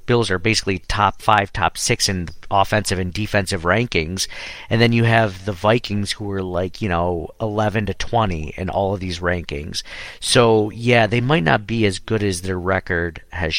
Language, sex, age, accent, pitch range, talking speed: English, male, 50-69, American, 95-110 Hz, 190 wpm